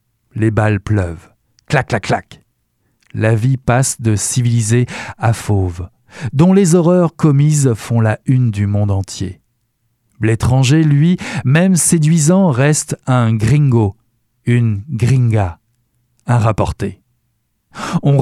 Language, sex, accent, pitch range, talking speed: French, male, French, 115-150 Hz, 115 wpm